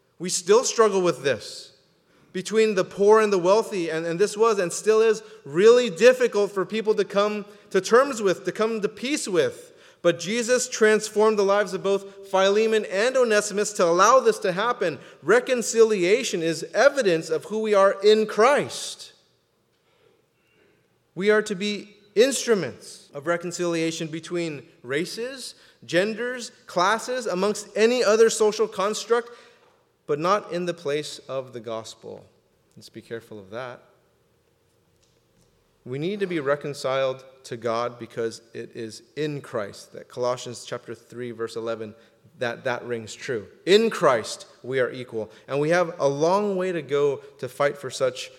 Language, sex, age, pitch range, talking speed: English, male, 30-49, 130-220 Hz, 155 wpm